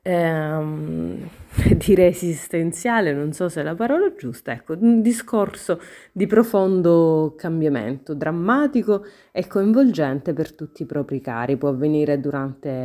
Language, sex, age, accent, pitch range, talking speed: Italian, female, 30-49, native, 145-195 Hz, 125 wpm